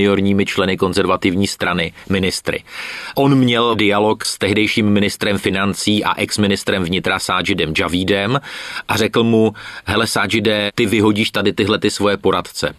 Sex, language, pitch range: male, Czech, 85-105 Hz